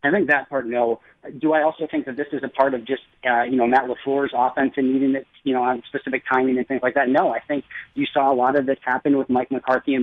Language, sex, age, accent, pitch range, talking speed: English, male, 30-49, American, 125-145 Hz, 285 wpm